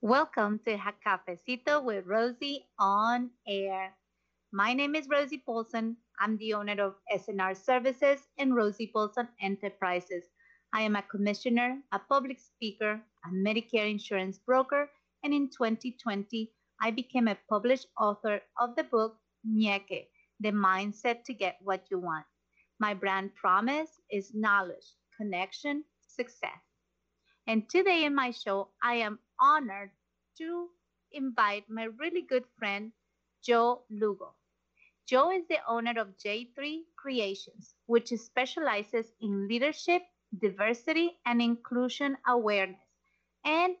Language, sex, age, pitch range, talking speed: English, female, 30-49, 205-270 Hz, 125 wpm